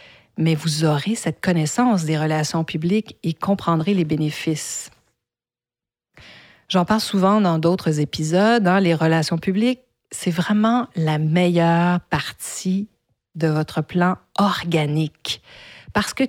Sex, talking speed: female, 120 wpm